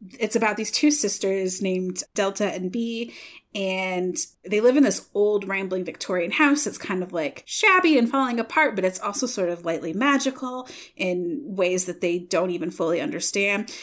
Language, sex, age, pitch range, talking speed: English, female, 20-39, 185-240 Hz, 180 wpm